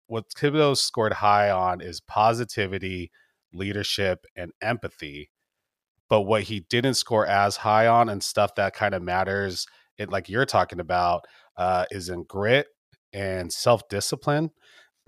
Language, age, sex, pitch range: English, 30-49, male, 95-120 Hz